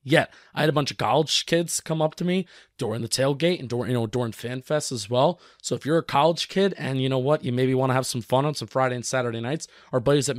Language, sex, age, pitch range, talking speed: English, male, 20-39, 130-165 Hz, 265 wpm